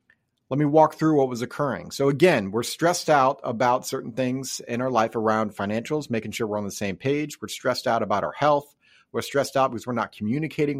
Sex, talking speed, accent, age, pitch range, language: male, 220 wpm, American, 30-49, 115-145 Hz, English